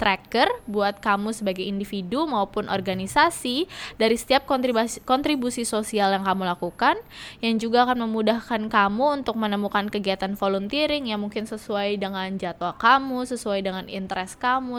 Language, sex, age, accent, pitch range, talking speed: English, female, 10-29, Indonesian, 200-240 Hz, 140 wpm